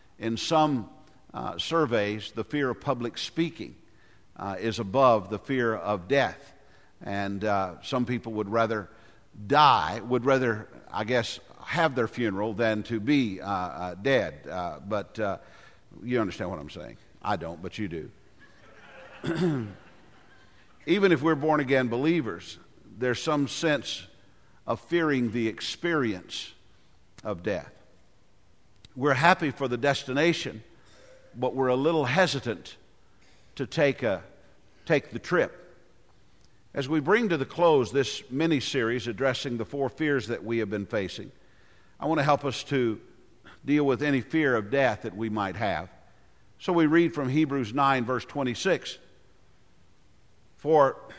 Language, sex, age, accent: English, male, 50-69, American